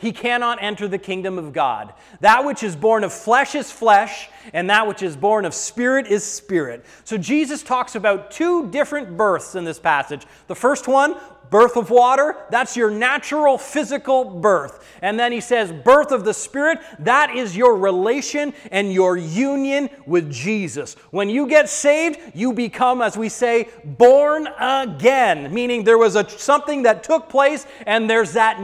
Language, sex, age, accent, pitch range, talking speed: English, male, 30-49, American, 185-265 Hz, 175 wpm